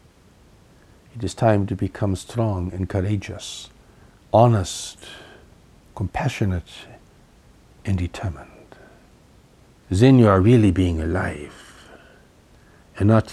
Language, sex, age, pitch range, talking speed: English, male, 60-79, 85-110 Hz, 90 wpm